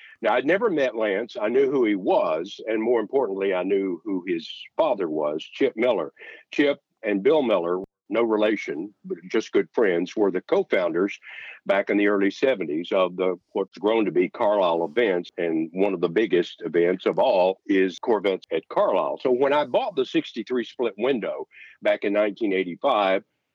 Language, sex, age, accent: English, male, 60-79, American